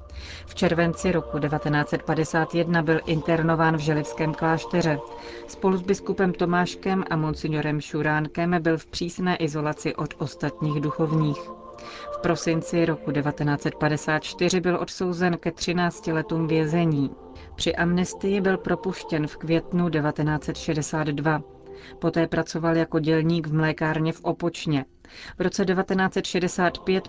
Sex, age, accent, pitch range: female, 30-49, native, 155-175 Hz